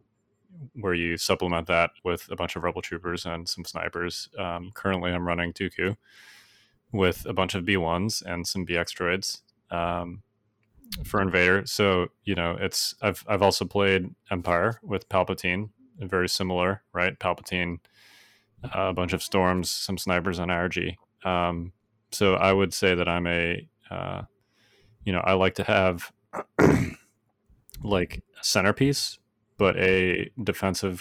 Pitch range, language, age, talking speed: 90-100 Hz, English, 30-49, 145 wpm